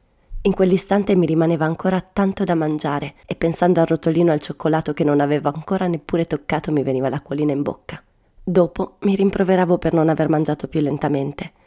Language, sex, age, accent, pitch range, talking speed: Italian, female, 30-49, native, 150-185 Hz, 175 wpm